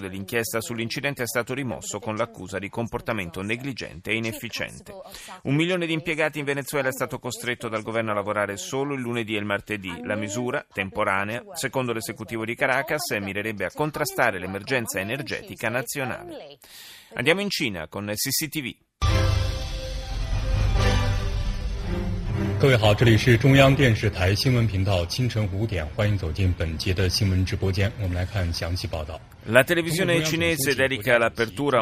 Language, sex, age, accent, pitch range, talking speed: Italian, male, 30-49, native, 105-135 Hz, 100 wpm